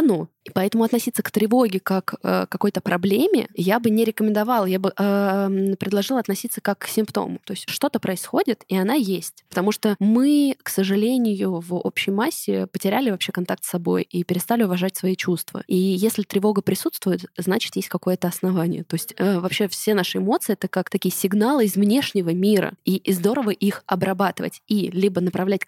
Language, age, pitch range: Russian, 20-39, 180-220 Hz